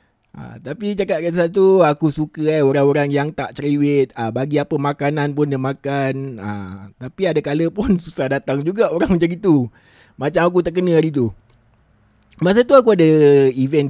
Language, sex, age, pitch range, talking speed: Malay, male, 20-39, 120-175 Hz, 175 wpm